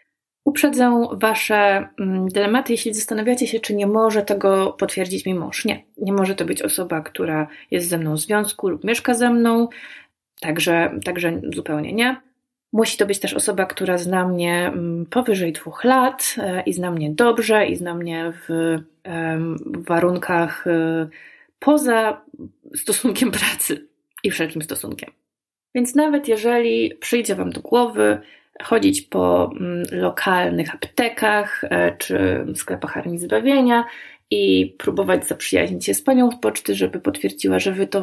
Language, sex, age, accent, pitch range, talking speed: Polish, female, 20-39, native, 170-235 Hz, 140 wpm